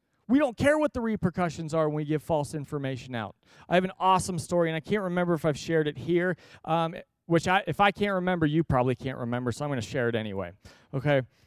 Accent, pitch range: American, 125-165 Hz